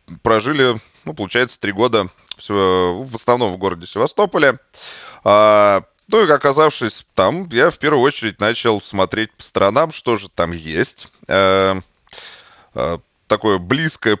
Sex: male